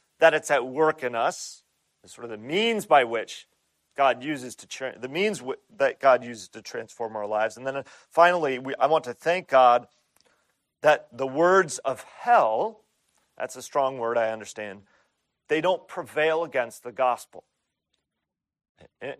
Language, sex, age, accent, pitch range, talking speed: English, male, 40-59, American, 125-165 Hz, 160 wpm